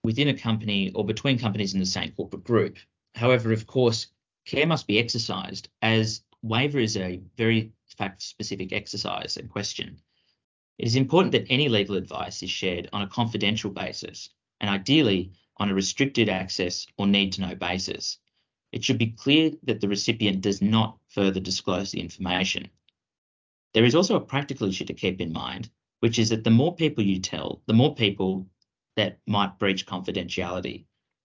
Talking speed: 175 wpm